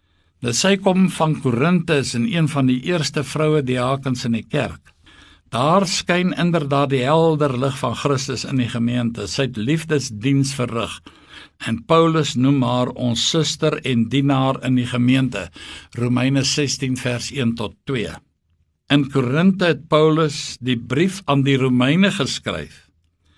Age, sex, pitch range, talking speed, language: 60-79, male, 120-150 Hz, 140 wpm, English